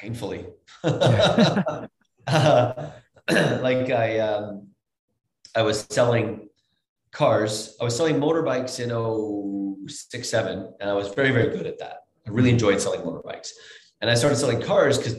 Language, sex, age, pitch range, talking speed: English, male, 30-49, 110-130 Hz, 135 wpm